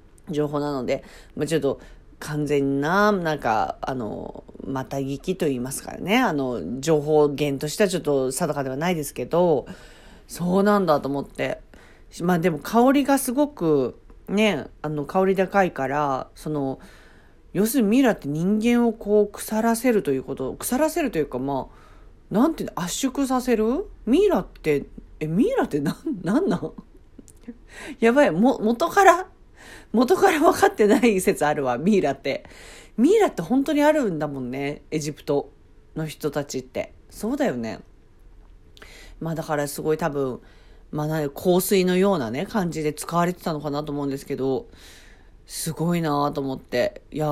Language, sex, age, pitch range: Japanese, female, 40-59, 145-220 Hz